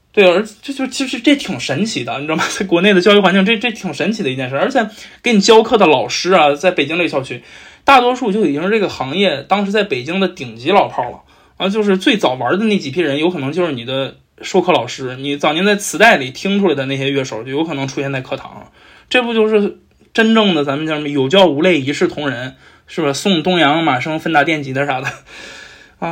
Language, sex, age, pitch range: Chinese, male, 20-39, 145-205 Hz